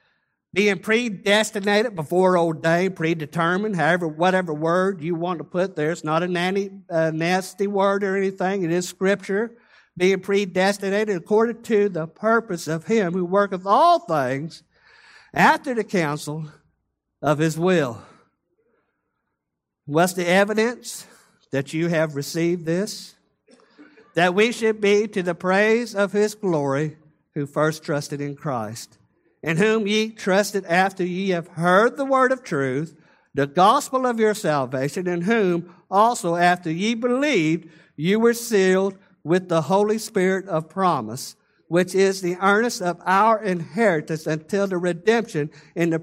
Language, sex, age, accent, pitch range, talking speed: English, male, 60-79, American, 160-205 Hz, 145 wpm